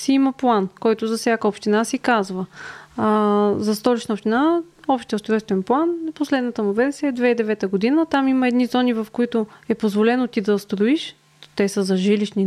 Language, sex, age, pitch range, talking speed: Bulgarian, female, 20-39, 200-255 Hz, 180 wpm